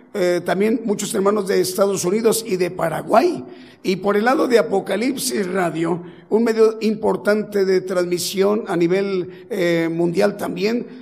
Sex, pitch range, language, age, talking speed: male, 185-215 Hz, Spanish, 50-69, 145 wpm